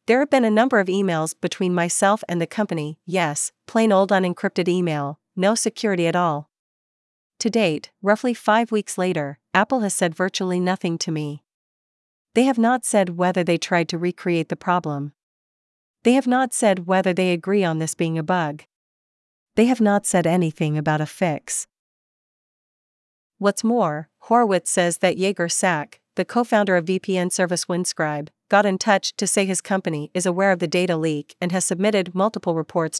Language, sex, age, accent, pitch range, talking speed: English, female, 40-59, American, 165-200 Hz, 175 wpm